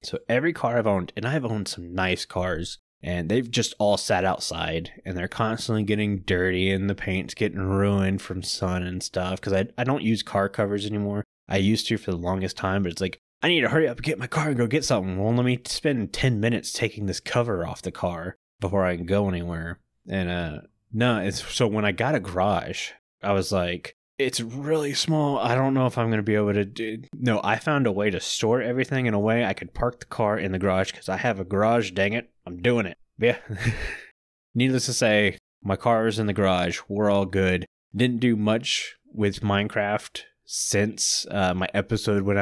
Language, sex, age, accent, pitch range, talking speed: English, male, 20-39, American, 95-115 Hz, 225 wpm